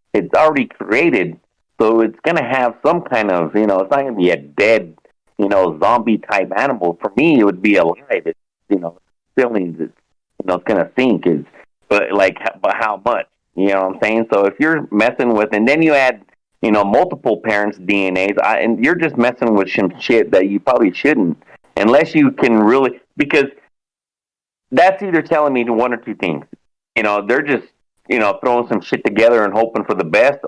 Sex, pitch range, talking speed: male, 95-120 Hz, 210 wpm